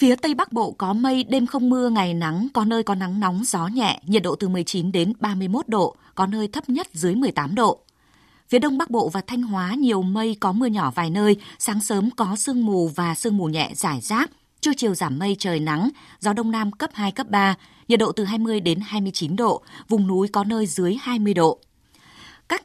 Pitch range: 185-235 Hz